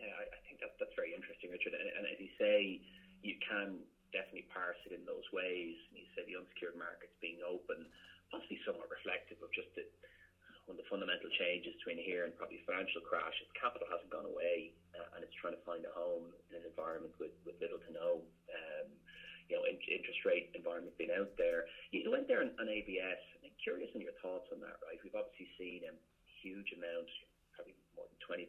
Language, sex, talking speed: English, male, 210 wpm